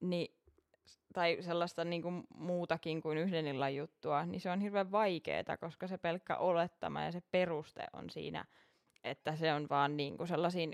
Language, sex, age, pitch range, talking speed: Finnish, female, 20-39, 155-175 Hz, 160 wpm